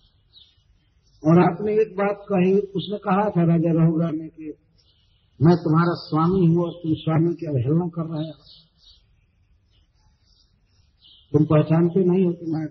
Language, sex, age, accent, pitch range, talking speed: Hindi, male, 50-69, native, 130-185 Hz, 145 wpm